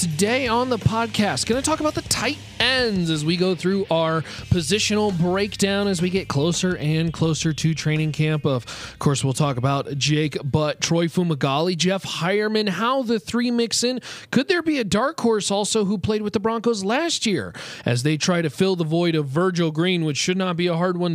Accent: American